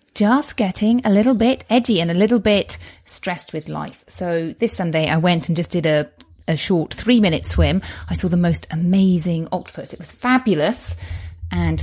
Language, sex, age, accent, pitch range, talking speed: English, female, 30-49, British, 160-225 Hz, 190 wpm